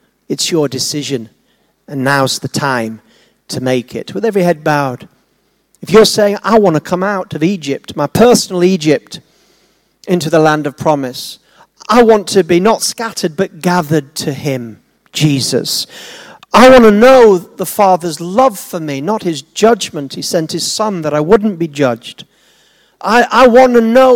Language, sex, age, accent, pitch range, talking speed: English, male, 40-59, British, 130-185 Hz, 170 wpm